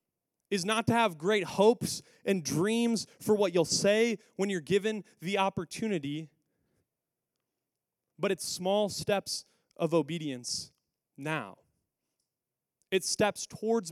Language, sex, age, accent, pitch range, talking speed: English, male, 20-39, American, 170-220 Hz, 115 wpm